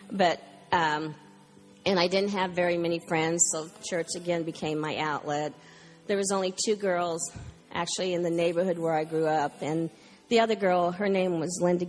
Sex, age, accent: female, 50-69, American